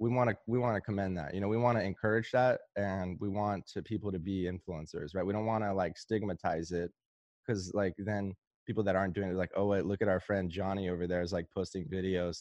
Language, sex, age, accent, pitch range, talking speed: English, male, 20-39, American, 95-115 Hz, 255 wpm